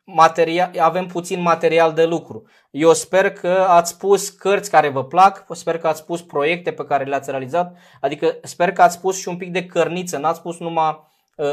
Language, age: Romanian, 20-39